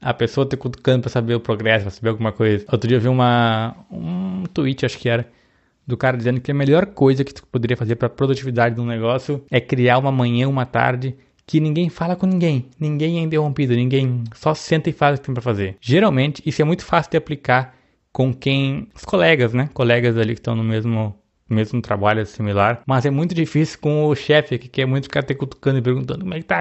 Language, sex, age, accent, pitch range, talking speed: Portuguese, male, 20-39, Brazilian, 120-150 Hz, 230 wpm